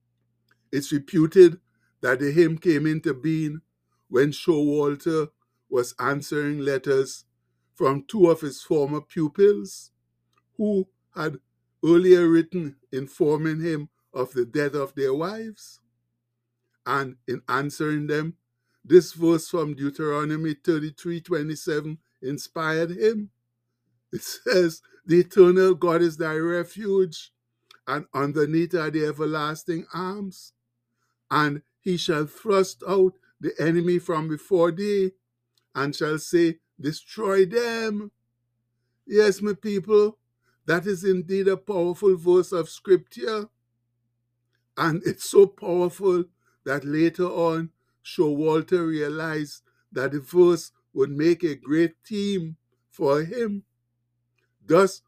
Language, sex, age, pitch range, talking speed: English, male, 60-79, 130-175 Hz, 115 wpm